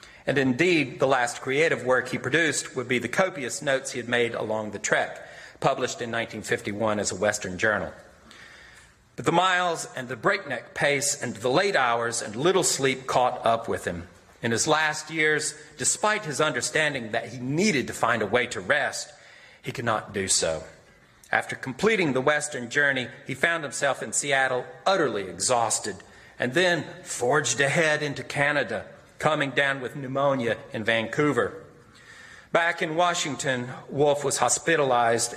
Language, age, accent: English, 40-59, American